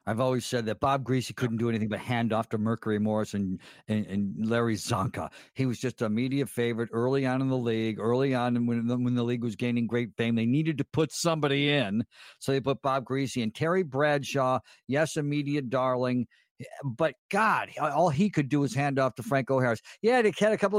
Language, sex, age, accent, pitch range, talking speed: English, male, 50-69, American, 120-160 Hz, 220 wpm